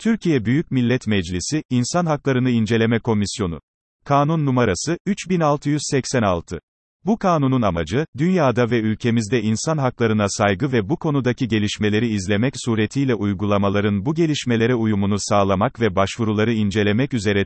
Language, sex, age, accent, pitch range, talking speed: Turkish, male, 40-59, native, 105-140 Hz, 120 wpm